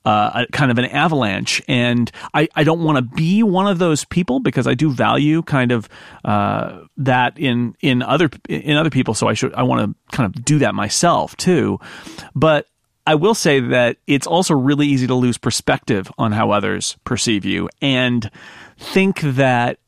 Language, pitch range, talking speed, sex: English, 115-150 Hz, 190 wpm, male